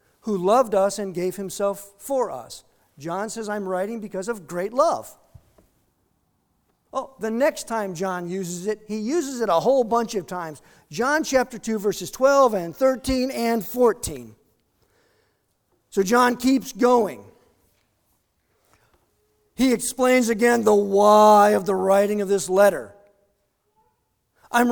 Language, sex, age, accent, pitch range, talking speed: English, male, 50-69, American, 180-245 Hz, 135 wpm